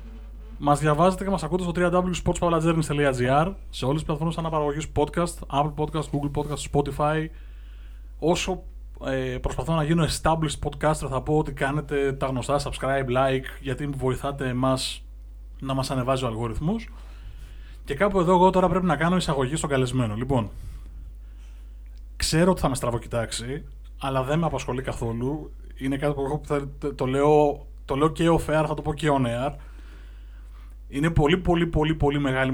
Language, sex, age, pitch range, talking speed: Greek, male, 20-39, 125-160 Hz, 160 wpm